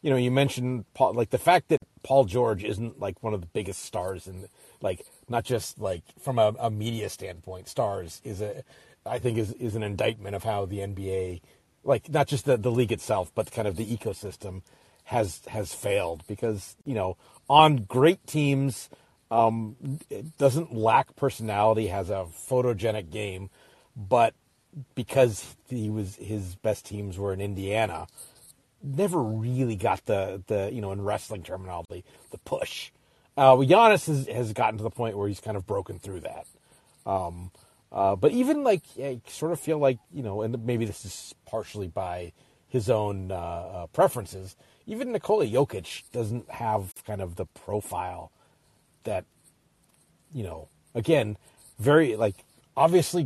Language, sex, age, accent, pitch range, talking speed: English, male, 40-59, American, 100-130 Hz, 160 wpm